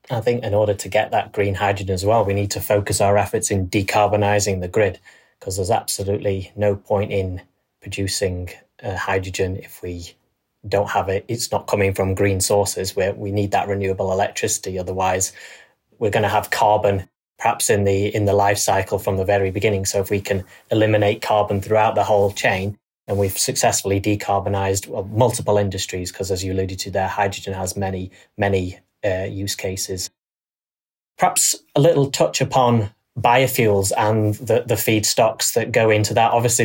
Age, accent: 30-49, British